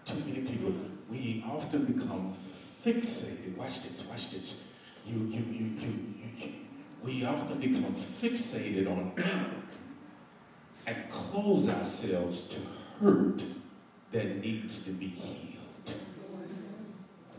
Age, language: 50-69, English